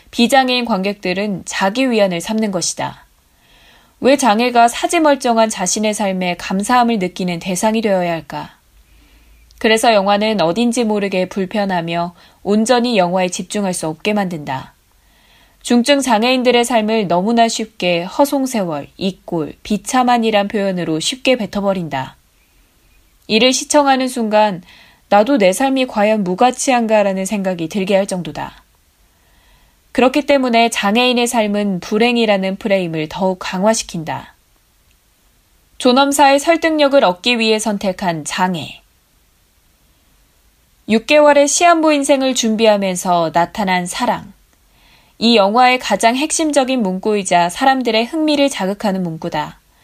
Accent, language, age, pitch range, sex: native, Korean, 20-39, 185-245 Hz, female